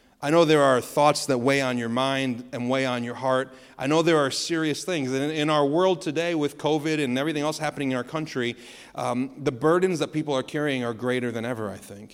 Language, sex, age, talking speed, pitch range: English, male, 40-59, 235 wpm, 115-145 Hz